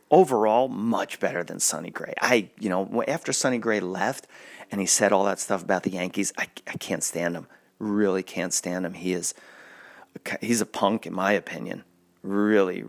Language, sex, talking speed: English, male, 185 wpm